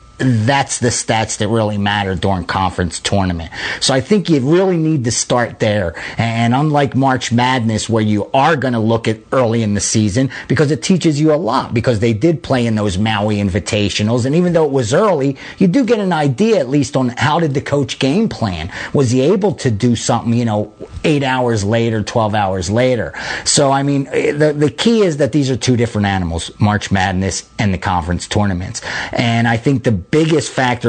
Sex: male